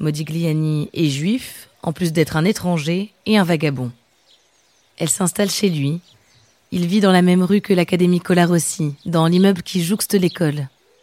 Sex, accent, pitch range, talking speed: female, French, 160-195 Hz, 160 wpm